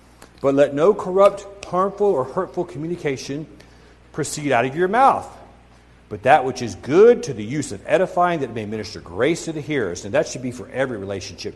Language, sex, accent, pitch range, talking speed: English, male, American, 105-160 Hz, 190 wpm